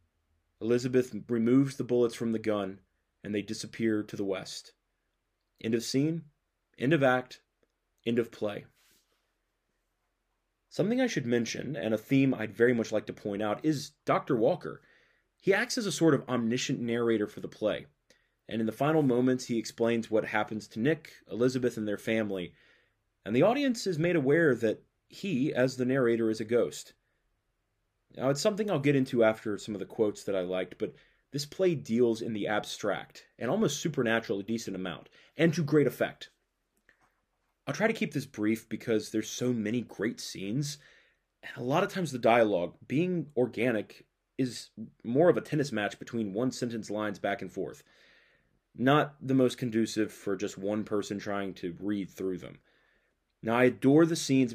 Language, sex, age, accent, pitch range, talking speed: English, male, 30-49, American, 105-135 Hz, 175 wpm